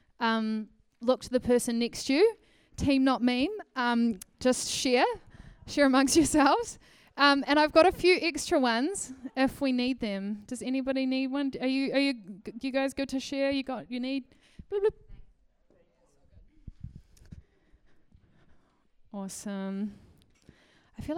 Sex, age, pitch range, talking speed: female, 20-39, 215-280 Hz, 150 wpm